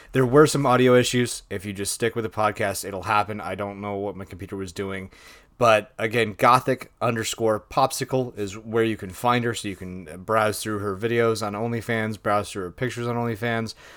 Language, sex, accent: English, male, American